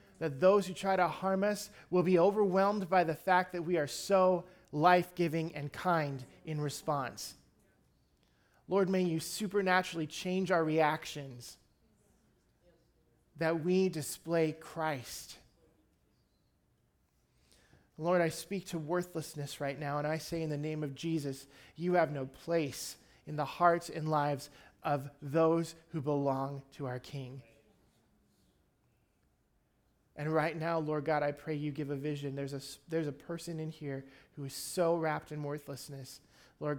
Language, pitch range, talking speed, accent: English, 140-170 Hz, 145 wpm, American